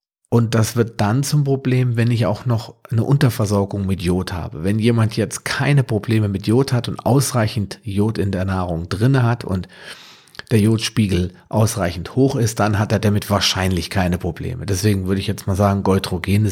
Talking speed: 185 wpm